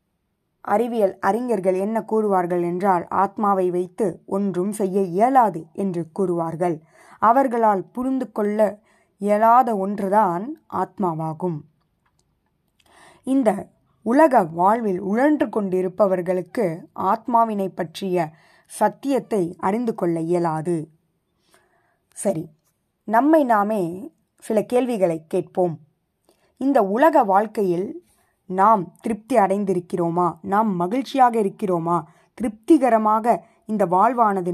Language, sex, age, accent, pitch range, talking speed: Tamil, female, 20-39, native, 180-230 Hz, 80 wpm